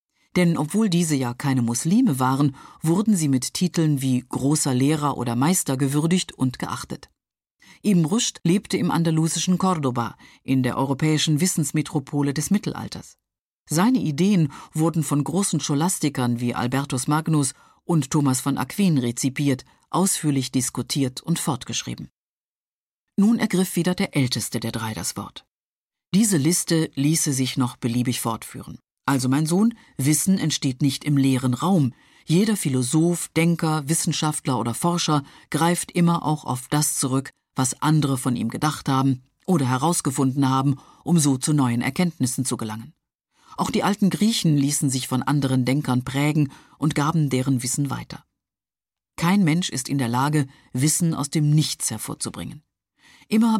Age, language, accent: 50-69, German, German